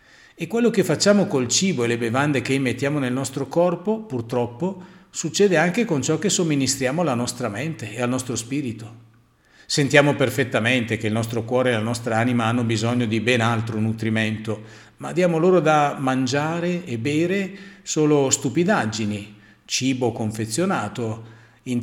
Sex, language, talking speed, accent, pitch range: male, Italian, 155 wpm, native, 115-145 Hz